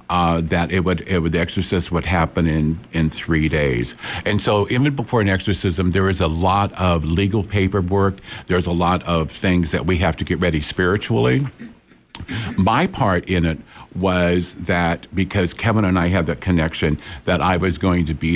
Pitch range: 80-95 Hz